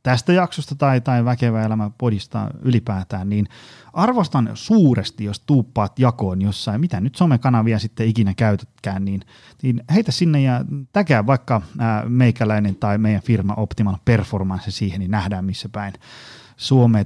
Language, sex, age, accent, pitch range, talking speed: Finnish, male, 30-49, native, 105-130 Hz, 145 wpm